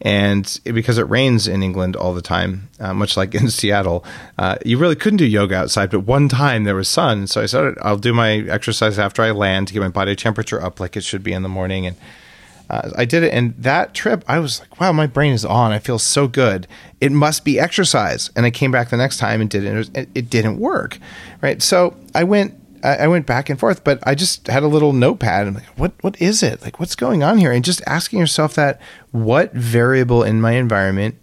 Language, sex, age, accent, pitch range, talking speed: English, male, 30-49, American, 100-130 Hz, 240 wpm